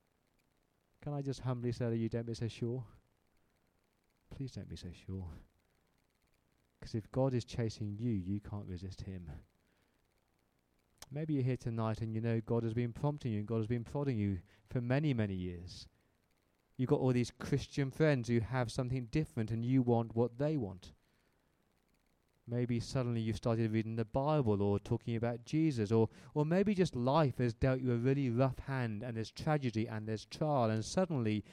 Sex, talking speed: male, 180 wpm